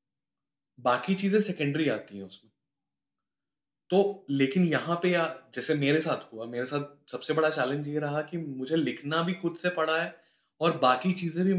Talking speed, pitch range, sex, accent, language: 160 wpm, 130-170 Hz, male, native, Hindi